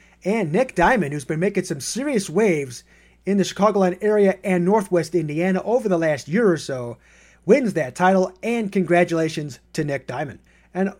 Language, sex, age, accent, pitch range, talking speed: English, male, 30-49, American, 150-215 Hz, 170 wpm